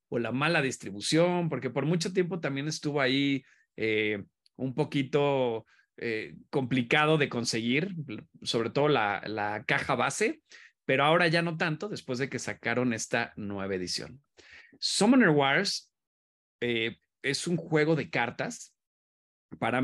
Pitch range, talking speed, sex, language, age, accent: 125-160 Hz, 135 wpm, male, Spanish, 40-59, Mexican